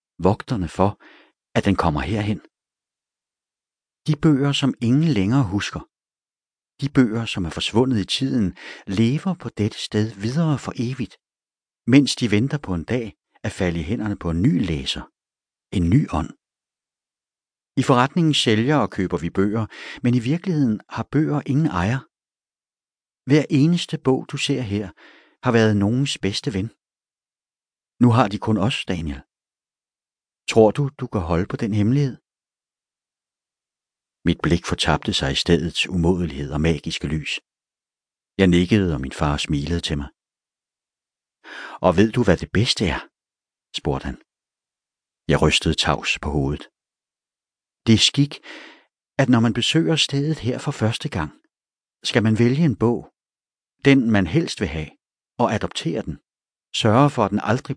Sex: male